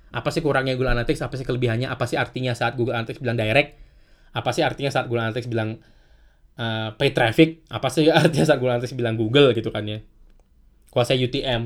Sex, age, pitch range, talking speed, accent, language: male, 20-39, 115-150 Hz, 200 wpm, native, Indonesian